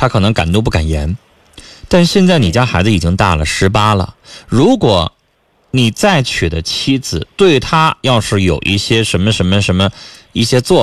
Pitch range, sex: 95-150 Hz, male